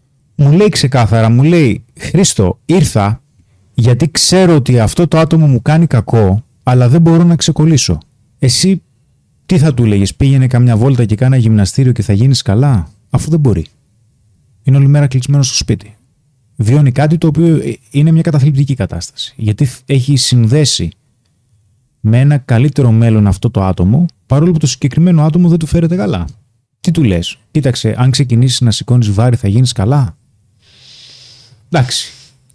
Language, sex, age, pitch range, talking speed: Greek, male, 30-49, 110-140 Hz, 155 wpm